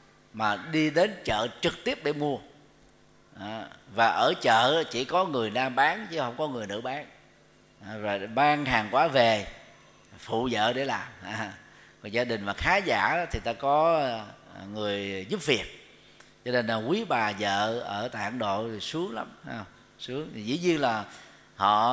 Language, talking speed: Vietnamese, 175 wpm